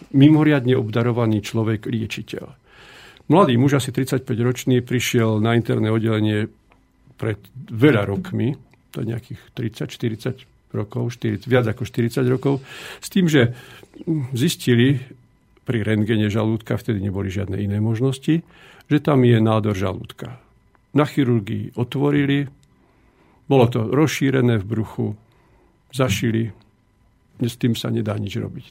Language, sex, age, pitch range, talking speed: Slovak, male, 50-69, 110-145 Hz, 115 wpm